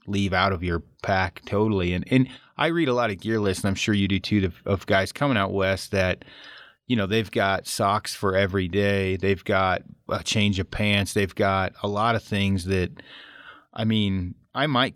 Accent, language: American, English